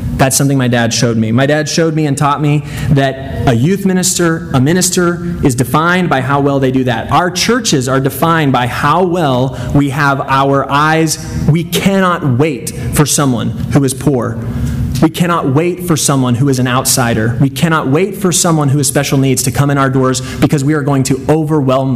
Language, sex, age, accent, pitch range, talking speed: English, male, 30-49, American, 130-160 Hz, 205 wpm